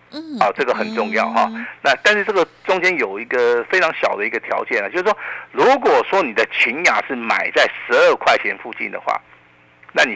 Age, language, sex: 50-69, Chinese, male